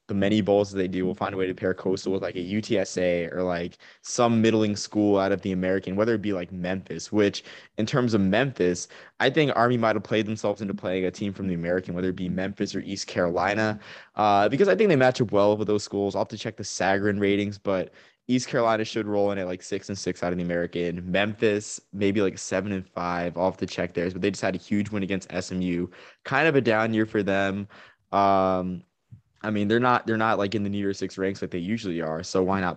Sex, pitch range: male, 90-105 Hz